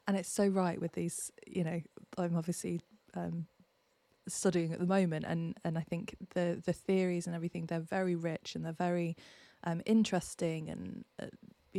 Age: 20-39